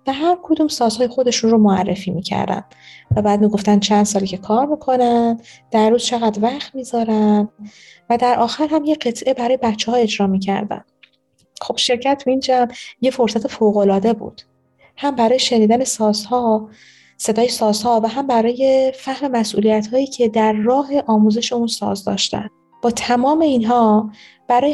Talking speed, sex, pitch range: 150 wpm, female, 215-265 Hz